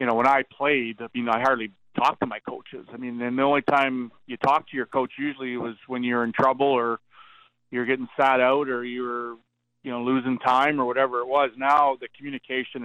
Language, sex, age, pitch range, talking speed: English, male, 40-59, 120-140 Hz, 230 wpm